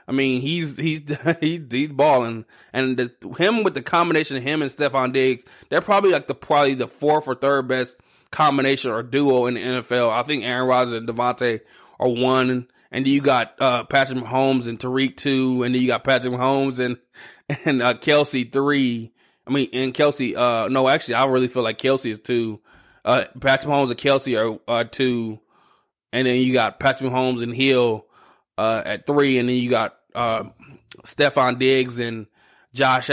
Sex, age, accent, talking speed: male, 20-39, American, 190 wpm